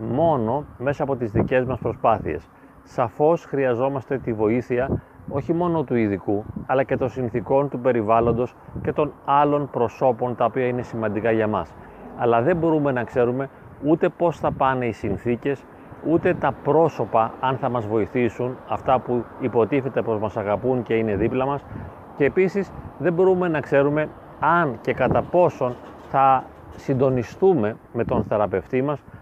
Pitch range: 115-150 Hz